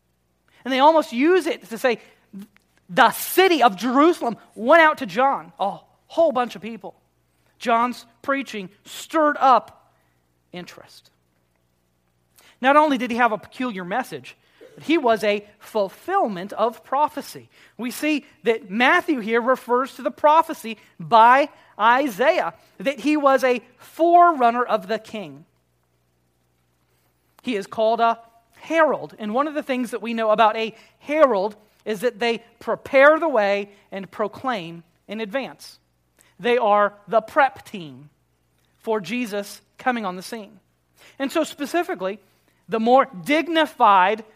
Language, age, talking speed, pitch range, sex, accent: English, 40-59, 140 wpm, 200-270 Hz, male, American